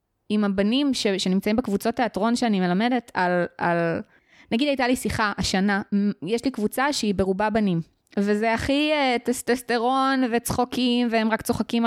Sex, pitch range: female, 195-250 Hz